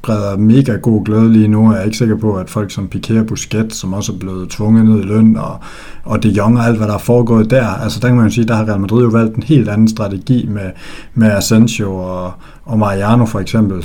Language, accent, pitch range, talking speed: Danish, native, 100-115 Hz, 265 wpm